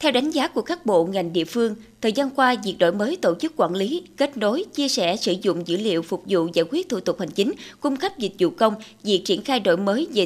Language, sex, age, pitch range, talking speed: Vietnamese, female, 20-39, 185-275 Hz, 270 wpm